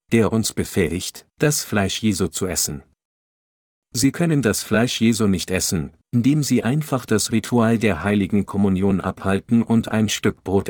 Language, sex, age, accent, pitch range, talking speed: German, male, 50-69, German, 95-120 Hz, 155 wpm